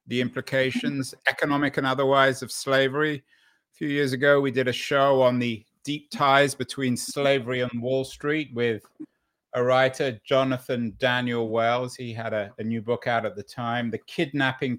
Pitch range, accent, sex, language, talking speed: 120-145 Hz, British, male, English, 170 wpm